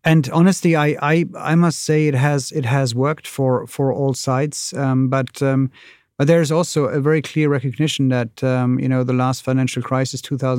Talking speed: 200 wpm